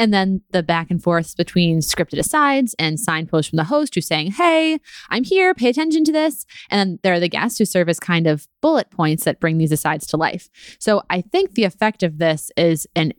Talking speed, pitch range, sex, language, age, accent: 230 wpm, 160-205 Hz, female, English, 20-39, American